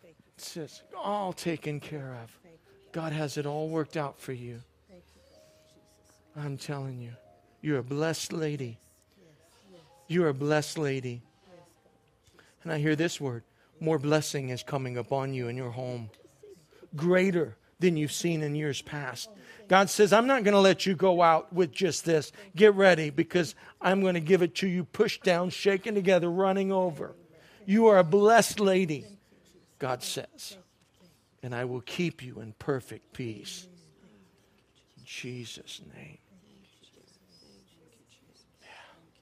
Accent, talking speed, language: American, 145 wpm, English